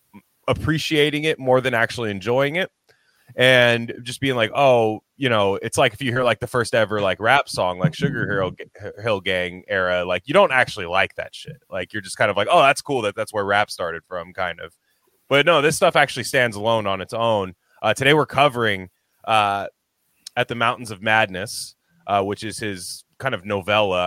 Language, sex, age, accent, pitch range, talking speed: English, male, 20-39, American, 95-125 Hz, 210 wpm